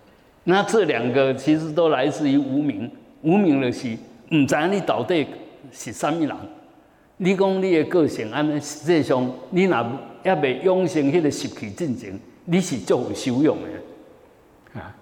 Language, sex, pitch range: Chinese, male, 125-170 Hz